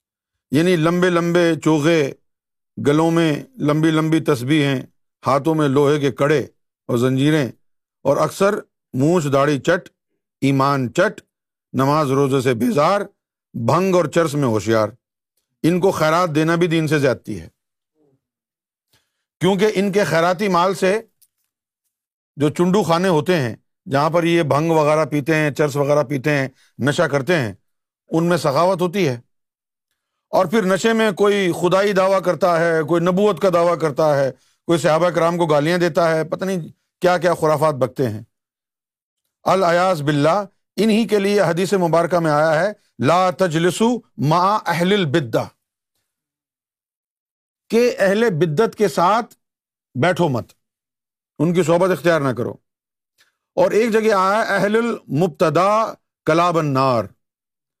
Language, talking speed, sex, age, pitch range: Urdu, 140 wpm, male, 50-69, 140-185 Hz